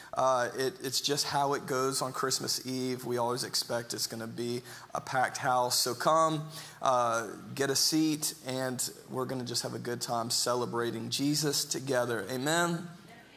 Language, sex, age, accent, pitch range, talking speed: English, male, 30-49, American, 125-150 Hz, 170 wpm